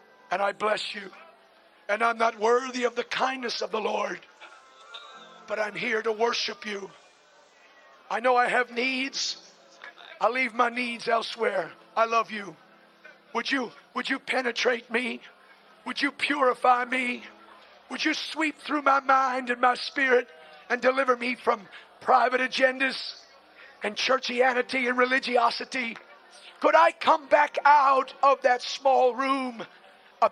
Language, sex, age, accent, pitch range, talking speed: English, male, 50-69, American, 235-275 Hz, 145 wpm